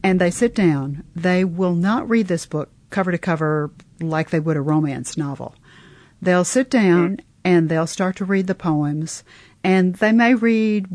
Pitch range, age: 150-190 Hz, 50-69